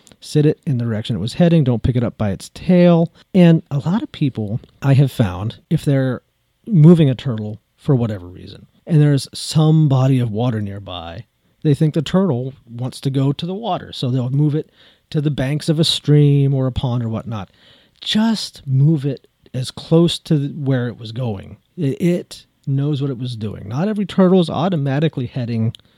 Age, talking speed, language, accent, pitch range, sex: 40-59, 195 wpm, English, American, 115-150 Hz, male